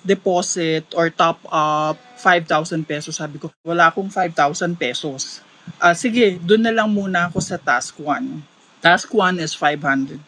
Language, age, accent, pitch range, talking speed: Filipino, 20-39, native, 150-185 Hz, 150 wpm